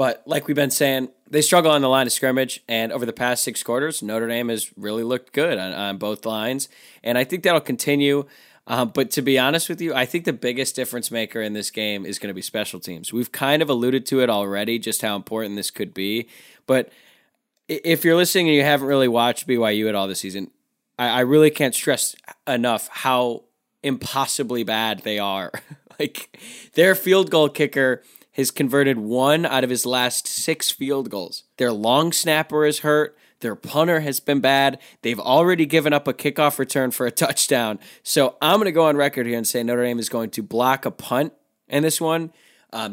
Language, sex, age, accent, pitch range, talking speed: English, male, 10-29, American, 115-145 Hz, 210 wpm